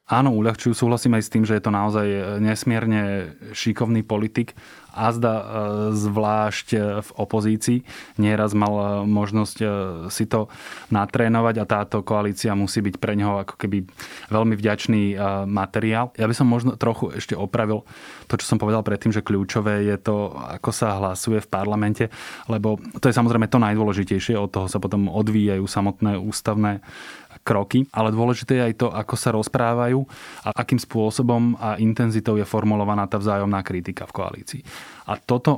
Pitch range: 105-115 Hz